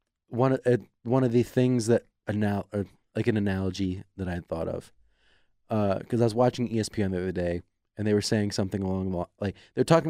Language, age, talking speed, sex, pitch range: English, 30-49, 225 wpm, male, 95-115 Hz